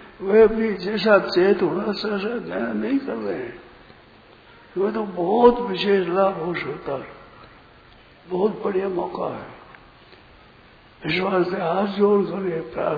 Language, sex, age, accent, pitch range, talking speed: Hindi, male, 60-79, native, 185-220 Hz, 95 wpm